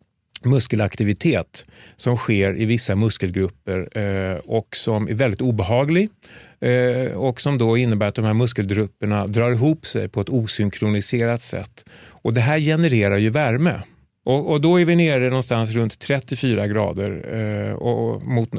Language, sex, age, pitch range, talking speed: Swedish, male, 30-49, 105-125 Hz, 140 wpm